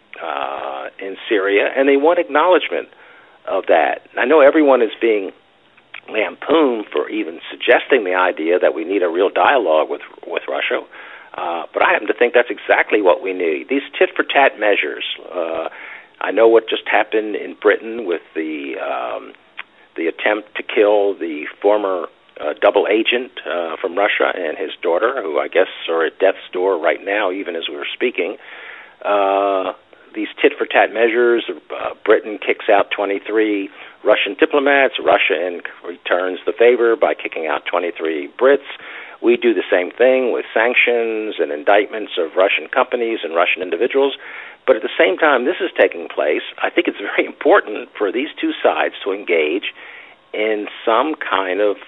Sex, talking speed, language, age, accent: male, 165 wpm, English, 50-69, American